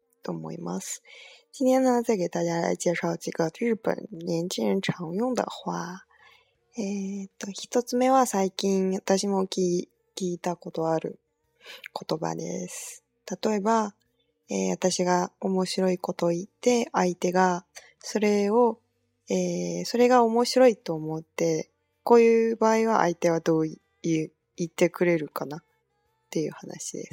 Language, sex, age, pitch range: Chinese, female, 20-39, 170-230 Hz